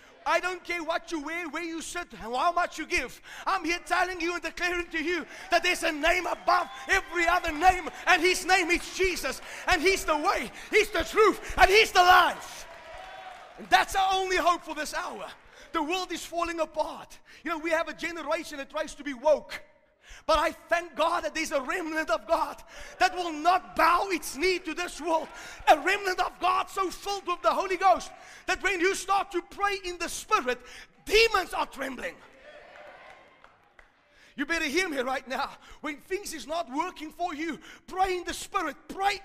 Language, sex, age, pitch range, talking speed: English, male, 30-49, 305-365 Hz, 195 wpm